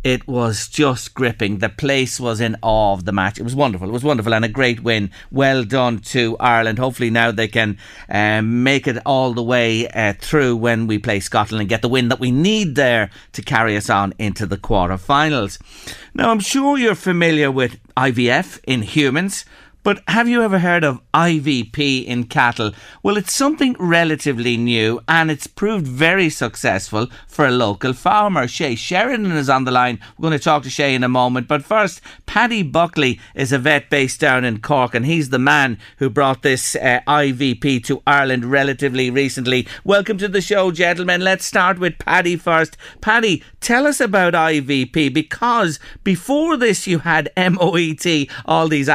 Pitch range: 120-165 Hz